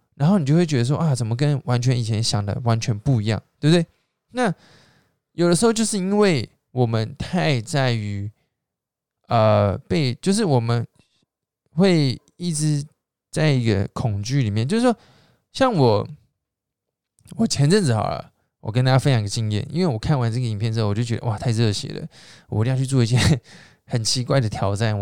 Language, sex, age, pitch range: Chinese, male, 20-39, 115-150 Hz